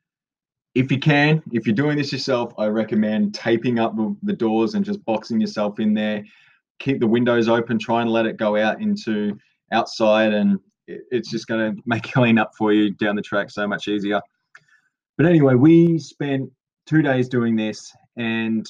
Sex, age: male, 20-39